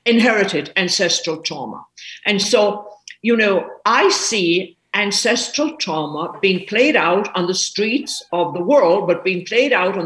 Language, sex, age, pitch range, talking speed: English, female, 50-69, 175-230 Hz, 150 wpm